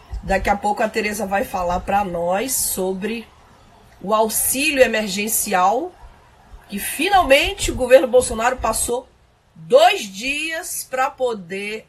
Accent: Brazilian